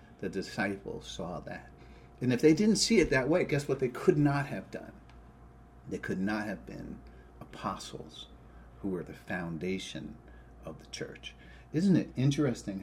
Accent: American